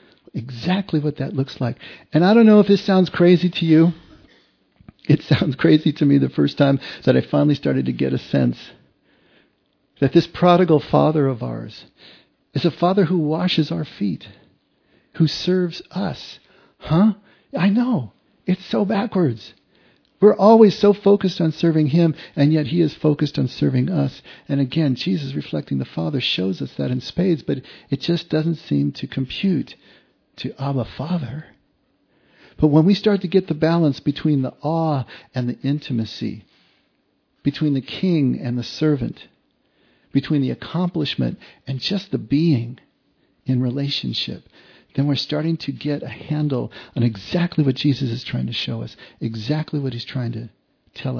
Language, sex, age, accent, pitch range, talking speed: English, male, 50-69, American, 135-180 Hz, 165 wpm